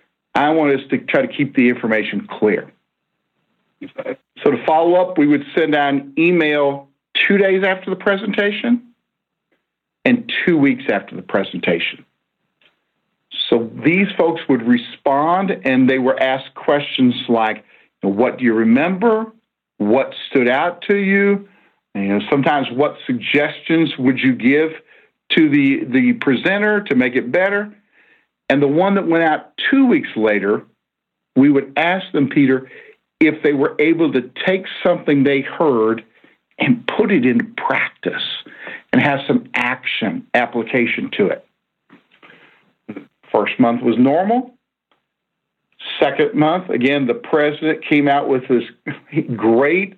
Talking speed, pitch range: 135 wpm, 130-195 Hz